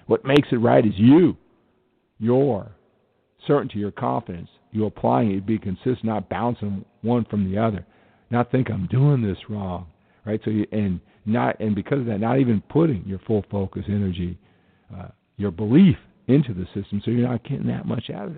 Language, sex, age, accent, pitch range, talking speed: English, male, 50-69, American, 95-120 Hz, 190 wpm